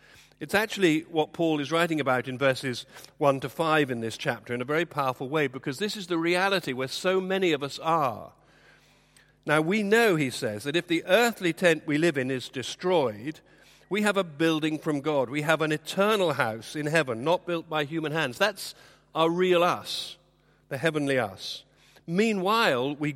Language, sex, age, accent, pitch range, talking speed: English, male, 50-69, British, 135-175 Hz, 190 wpm